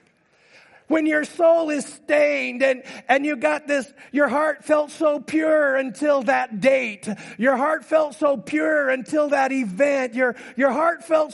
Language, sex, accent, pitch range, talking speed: English, male, American, 180-280 Hz, 160 wpm